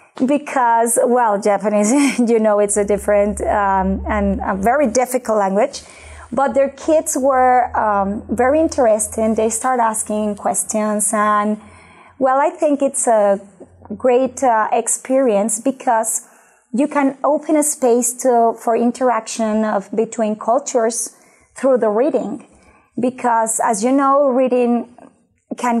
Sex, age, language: female, 20-39, Spanish